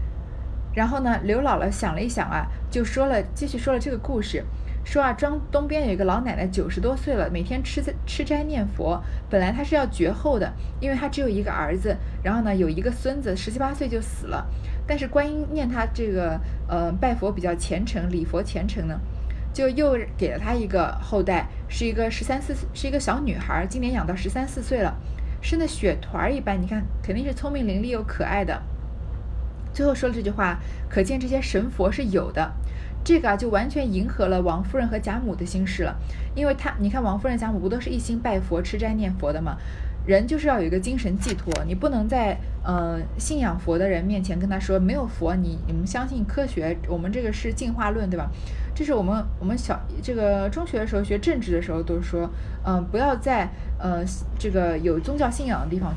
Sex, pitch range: female, 185-265 Hz